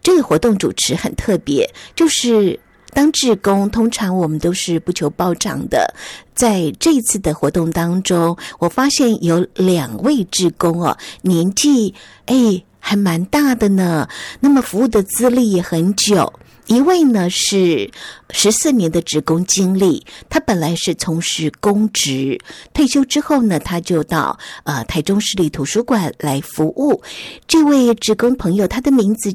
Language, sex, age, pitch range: Chinese, female, 50-69, 170-240 Hz